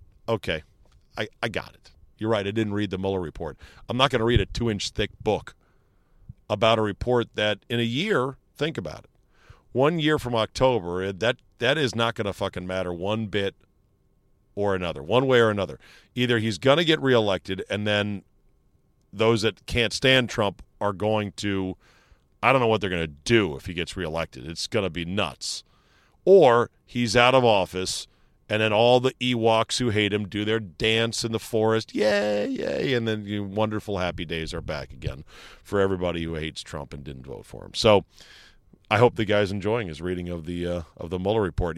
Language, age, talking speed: English, 40-59, 200 wpm